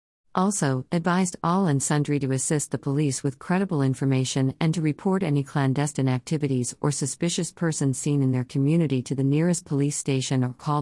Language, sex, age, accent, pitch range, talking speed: English, female, 50-69, American, 130-160 Hz, 175 wpm